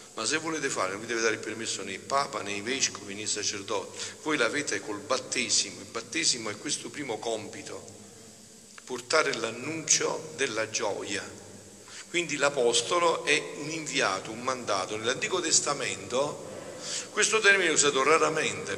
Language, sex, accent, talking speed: Italian, male, native, 140 wpm